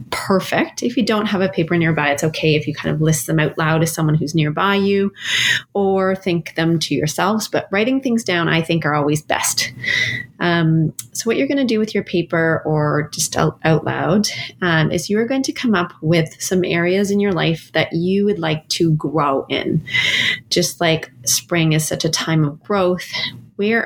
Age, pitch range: 30-49, 155-195 Hz